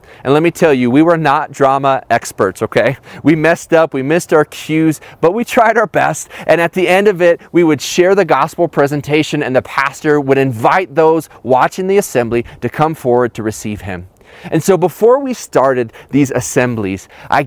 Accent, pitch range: American, 120-165 Hz